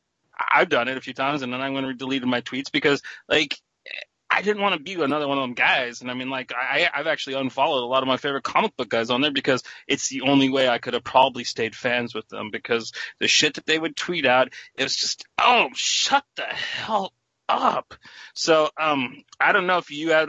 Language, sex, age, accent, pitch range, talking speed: English, male, 30-49, American, 130-150 Hz, 240 wpm